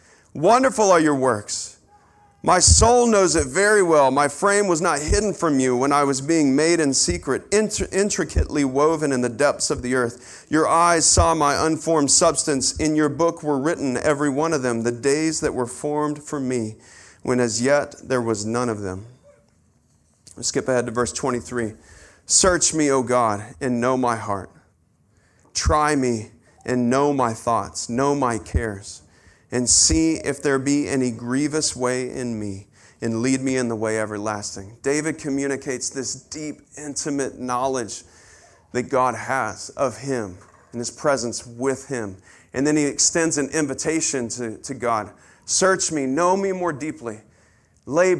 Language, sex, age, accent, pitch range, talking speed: English, male, 40-59, American, 115-150 Hz, 165 wpm